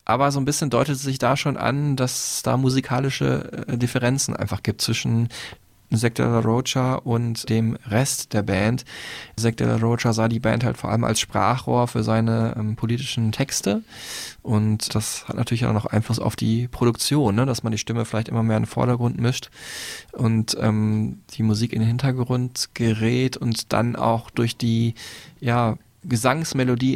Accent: German